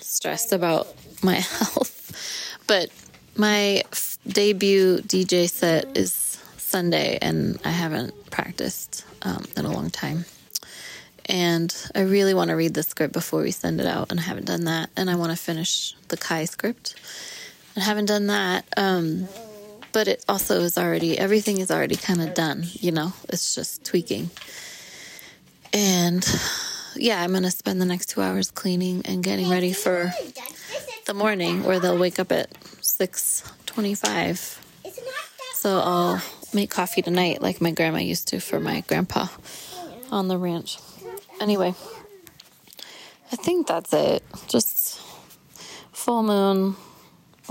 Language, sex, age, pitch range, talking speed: English, female, 20-39, 175-205 Hz, 145 wpm